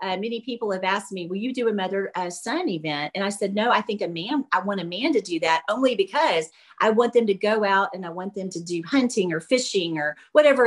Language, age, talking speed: English, 40-59, 270 wpm